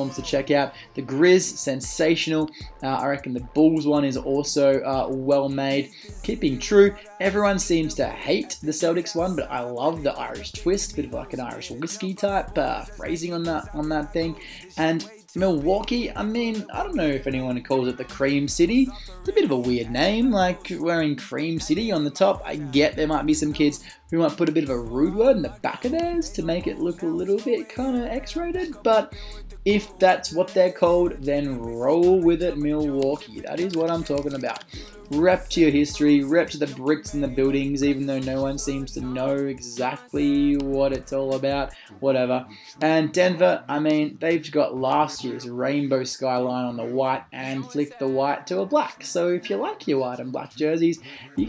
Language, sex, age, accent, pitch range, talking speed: English, male, 20-39, Australian, 135-180 Hz, 205 wpm